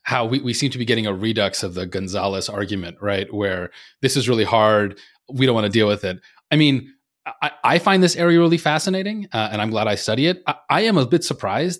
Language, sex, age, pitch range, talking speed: English, male, 30-49, 115-165 Hz, 245 wpm